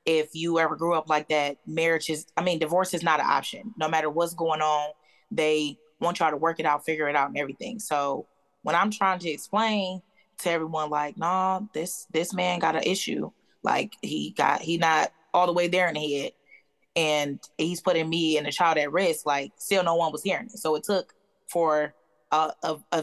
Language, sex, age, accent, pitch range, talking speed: English, female, 20-39, American, 155-180 Hz, 220 wpm